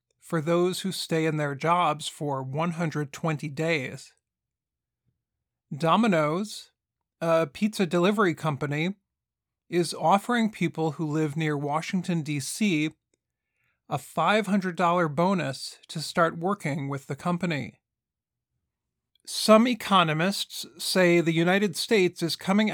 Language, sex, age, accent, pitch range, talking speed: English, male, 40-59, American, 150-185 Hz, 105 wpm